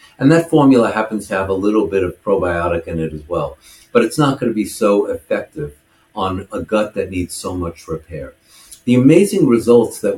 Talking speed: 205 wpm